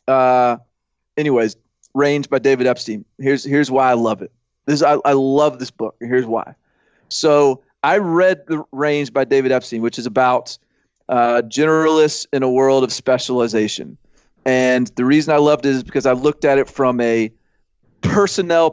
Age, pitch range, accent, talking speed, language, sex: 30-49, 125-145 Hz, American, 175 wpm, English, male